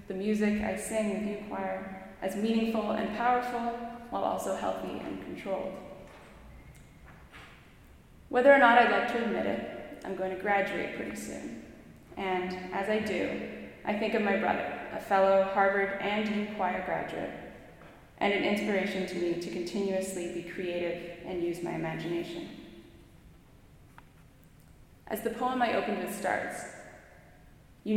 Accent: American